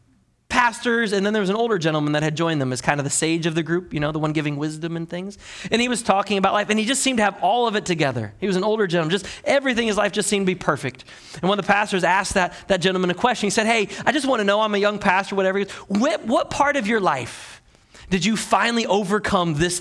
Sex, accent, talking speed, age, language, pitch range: male, American, 285 wpm, 30-49, English, 140-200 Hz